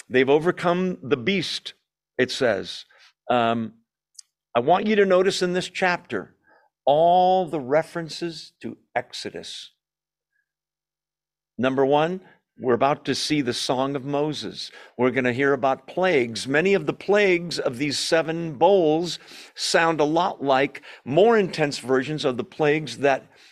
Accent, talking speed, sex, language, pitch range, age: American, 140 wpm, male, English, 130-170 Hz, 50-69